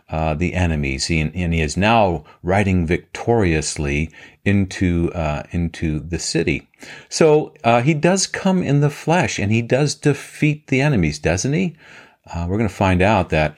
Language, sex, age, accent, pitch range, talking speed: English, male, 50-69, American, 80-110 Hz, 170 wpm